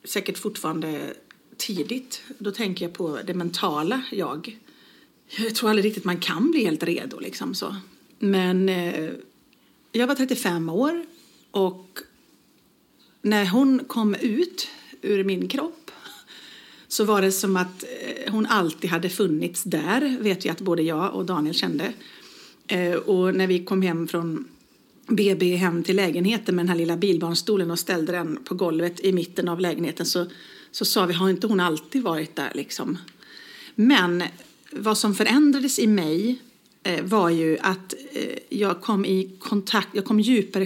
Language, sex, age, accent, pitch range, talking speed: English, female, 40-59, Swedish, 180-235 Hz, 155 wpm